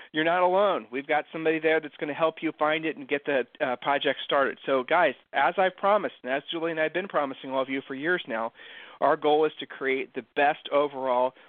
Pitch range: 140-175 Hz